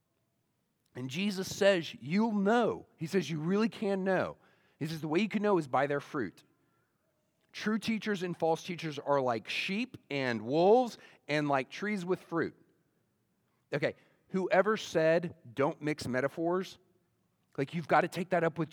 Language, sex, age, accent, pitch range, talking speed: English, male, 40-59, American, 130-180 Hz, 165 wpm